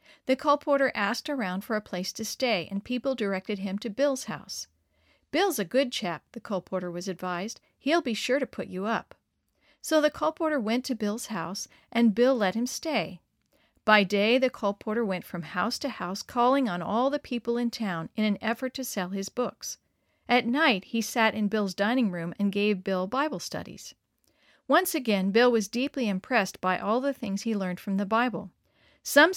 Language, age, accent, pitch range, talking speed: English, 50-69, American, 195-260 Hz, 195 wpm